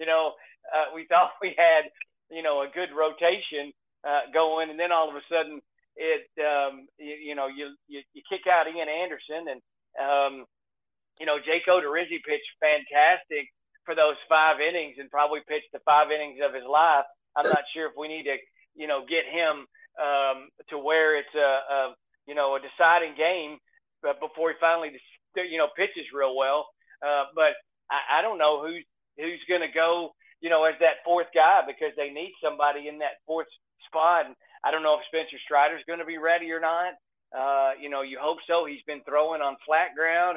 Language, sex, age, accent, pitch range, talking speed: English, male, 40-59, American, 140-165 Hz, 200 wpm